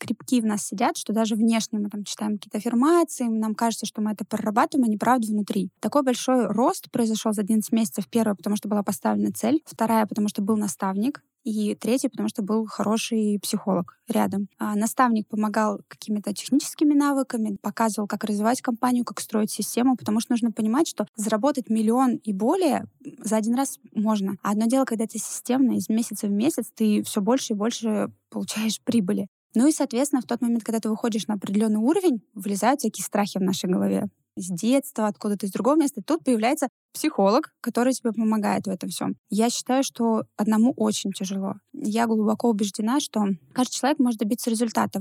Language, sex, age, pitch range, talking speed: Russian, female, 20-39, 210-245 Hz, 185 wpm